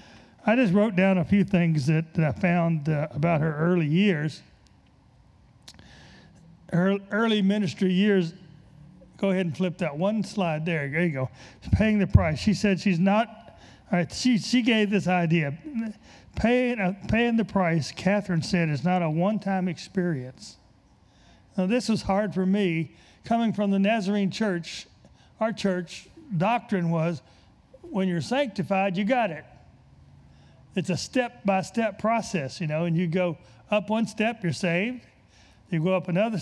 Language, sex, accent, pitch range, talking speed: English, male, American, 155-205 Hz, 160 wpm